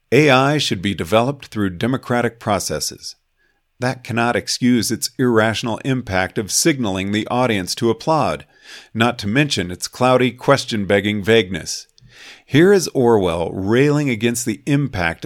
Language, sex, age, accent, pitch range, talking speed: English, male, 50-69, American, 100-130 Hz, 130 wpm